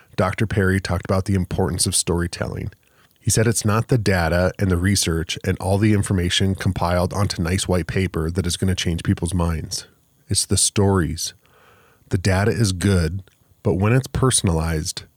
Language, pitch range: English, 95-110 Hz